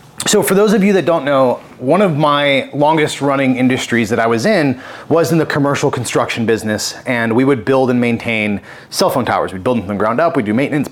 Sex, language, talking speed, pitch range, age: male, English, 235 wpm, 125-165 Hz, 30-49